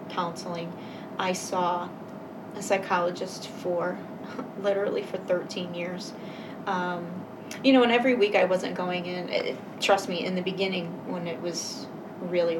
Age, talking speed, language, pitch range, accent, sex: 30-49, 140 wpm, English, 180-230 Hz, American, female